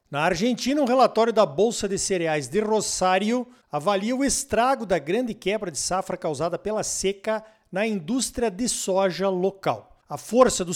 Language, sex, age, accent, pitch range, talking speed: Portuguese, male, 50-69, Brazilian, 180-225 Hz, 160 wpm